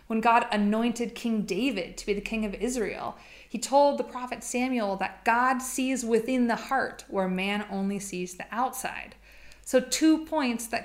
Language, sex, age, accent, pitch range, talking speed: English, female, 20-39, American, 200-260 Hz, 170 wpm